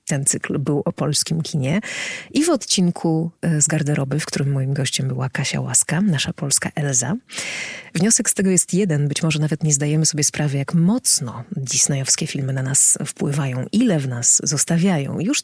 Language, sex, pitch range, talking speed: Polish, female, 145-180 Hz, 175 wpm